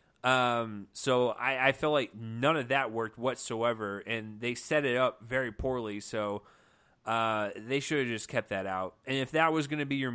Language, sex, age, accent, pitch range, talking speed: English, male, 30-49, American, 115-140 Hz, 205 wpm